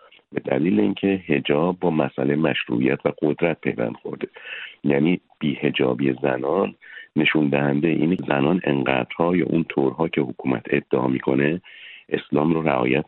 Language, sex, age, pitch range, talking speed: Persian, male, 50-69, 70-90 Hz, 140 wpm